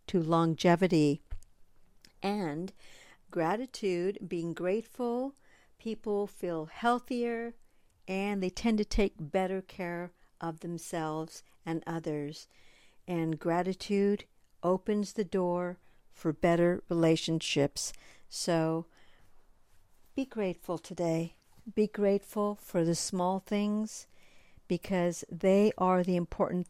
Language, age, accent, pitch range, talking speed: English, 60-79, American, 165-205 Hz, 95 wpm